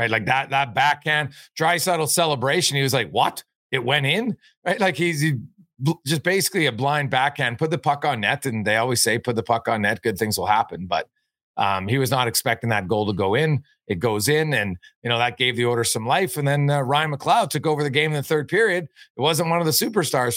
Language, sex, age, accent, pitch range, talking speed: English, male, 40-59, American, 125-165 Hz, 250 wpm